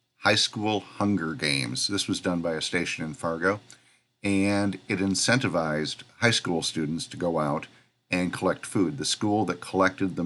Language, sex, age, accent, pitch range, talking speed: English, male, 50-69, American, 85-105 Hz, 170 wpm